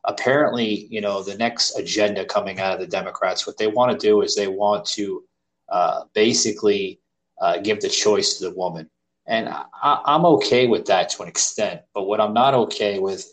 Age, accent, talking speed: 20-39, American, 195 wpm